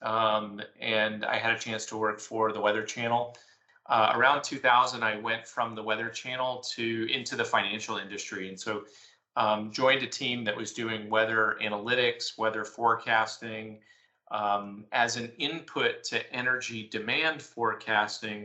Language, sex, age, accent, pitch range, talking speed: English, male, 30-49, American, 110-120 Hz, 155 wpm